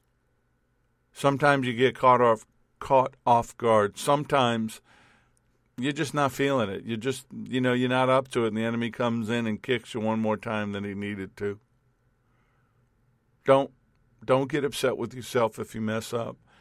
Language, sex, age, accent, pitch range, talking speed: English, male, 50-69, American, 115-135 Hz, 175 wpm